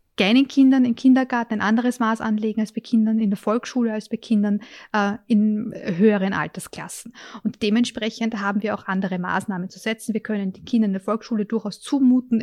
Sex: female